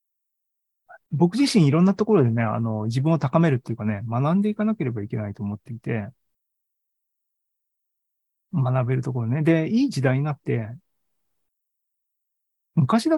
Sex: male